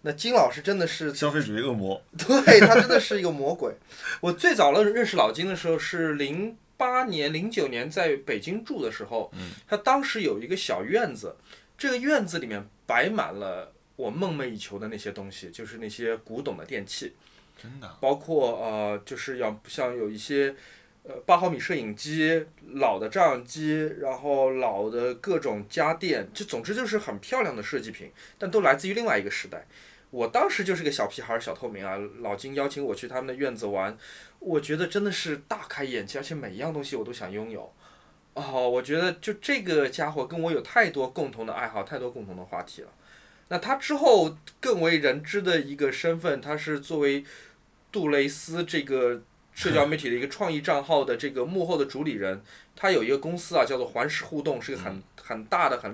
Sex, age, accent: male, 20-39, native